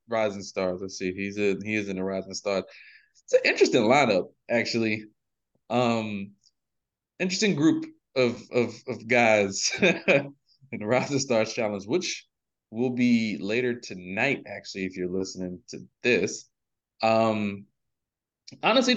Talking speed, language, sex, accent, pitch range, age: 135 wpm, English, male, American, 110-170 Hz, 20-39